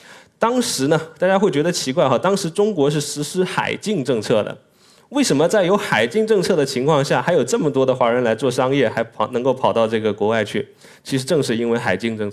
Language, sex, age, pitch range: Chinese, male, 20-39, 115-160 Hz